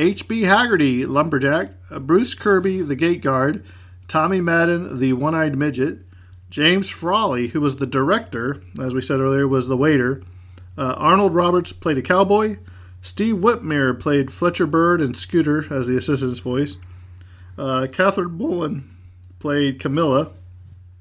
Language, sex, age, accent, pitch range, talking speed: English, male, 40-59, American, 120-155 Hz, 135 wpm